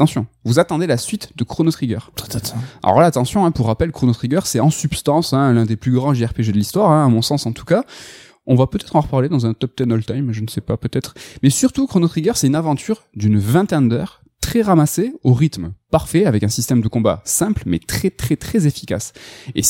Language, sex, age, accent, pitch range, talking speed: French, male, 20-39, French, 115-155 Hz, 230 wpm